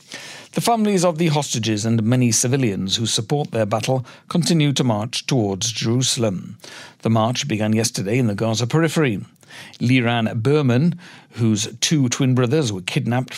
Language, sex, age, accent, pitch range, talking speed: English, male, 60-79, British, 115-150 Hz, 150 wpm